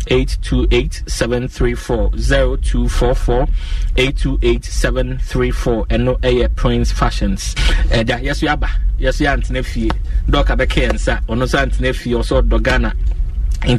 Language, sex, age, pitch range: English, male, 30-49, 115-135 Hz